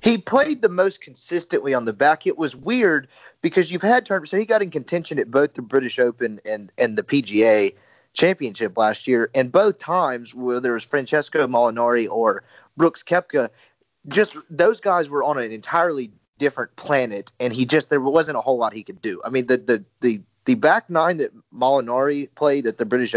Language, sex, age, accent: English, male, 30-49, American